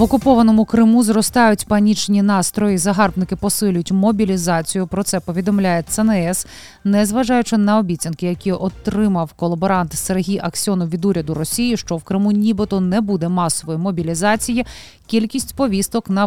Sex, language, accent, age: female, Ukrainian, native, 20-39